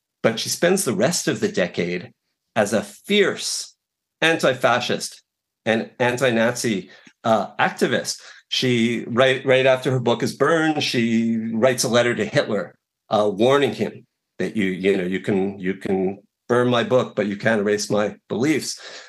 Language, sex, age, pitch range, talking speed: English, male, 50-69, 110-155 Hz, 155 wpm